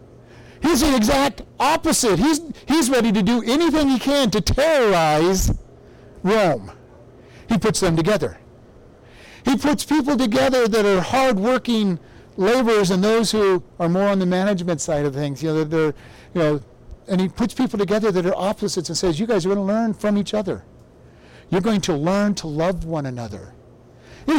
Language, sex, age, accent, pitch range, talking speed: English, male, 50-69, American, 155-215 Hz, 175 wpm